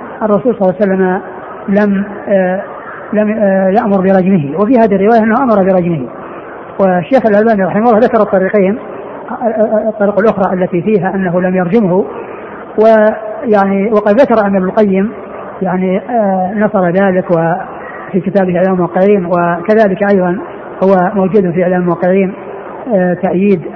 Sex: female